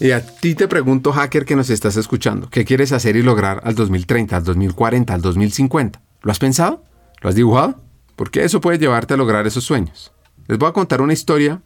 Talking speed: 210 wpm